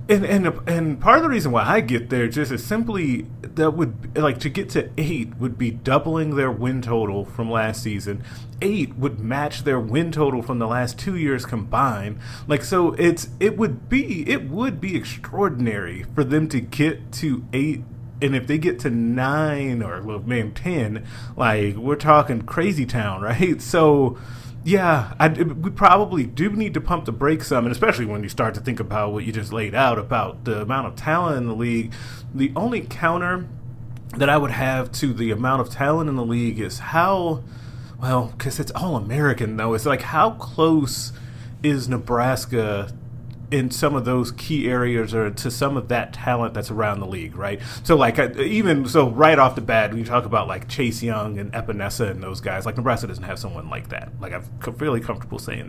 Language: English